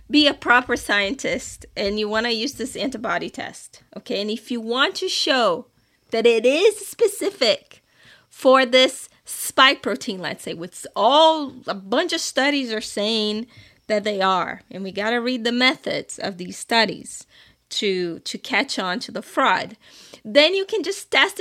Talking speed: 175 wpm